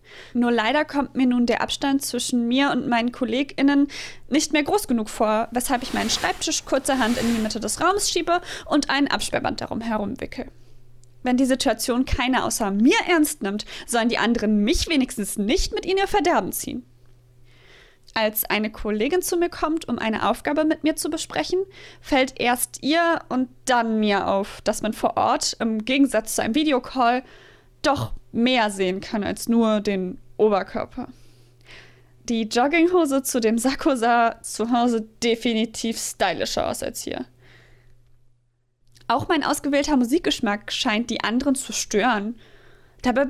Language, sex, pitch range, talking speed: German, female, 210-280 Hz, 155 wpm